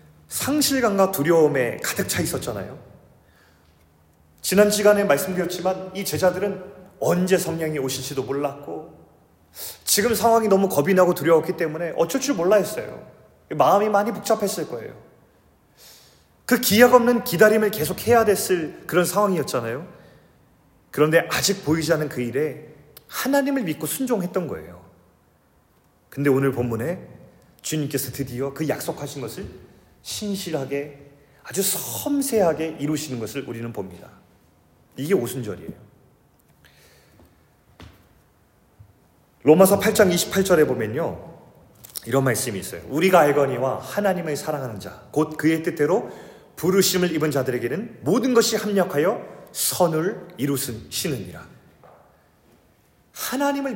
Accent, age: native, 30-49